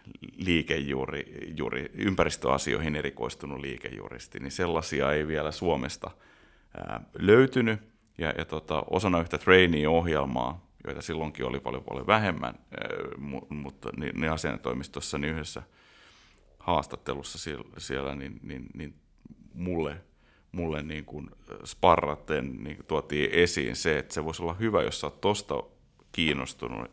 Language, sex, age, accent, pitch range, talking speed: Finnish, male, 30-49, native, 70-85 Hz, 125 wpm